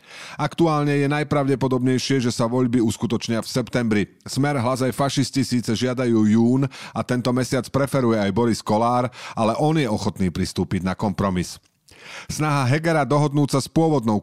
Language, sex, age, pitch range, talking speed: Slovak, male, 40-59, 105-130 Hz, 150 wpm